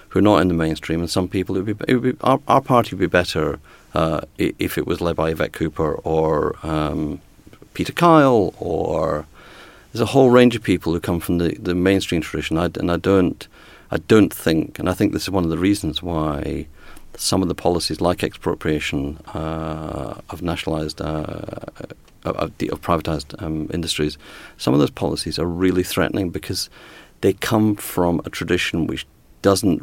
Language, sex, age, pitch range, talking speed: English, male, 40-59, 80-95 Hz, 190 wpm